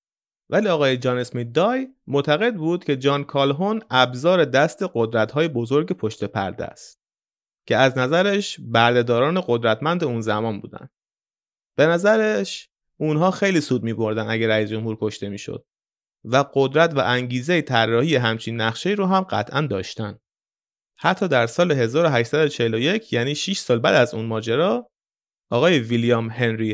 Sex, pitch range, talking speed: male, 115-165 Hz, 140 wpm